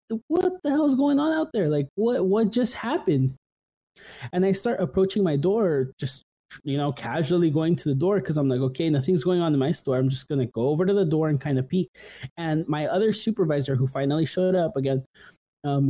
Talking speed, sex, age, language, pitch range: 225 wpm, male, 20-39, English, 140-205 Hz